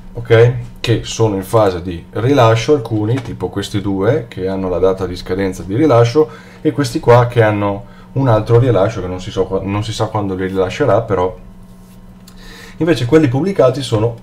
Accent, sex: native, male